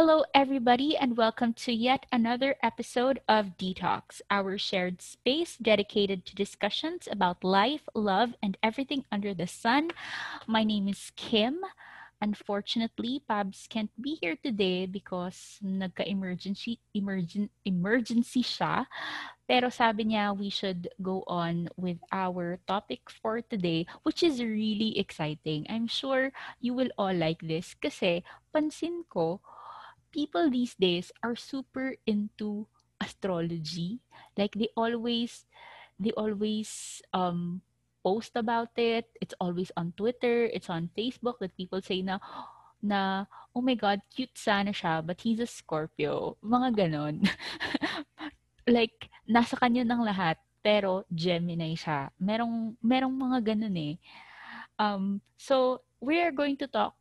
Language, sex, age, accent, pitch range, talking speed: English, female, 20-39, Filipino, 190-245 Hz, 130 wpm